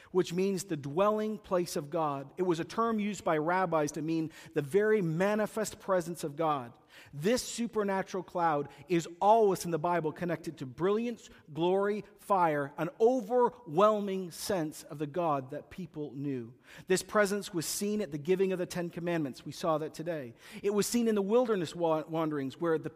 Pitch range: 160-205 Hz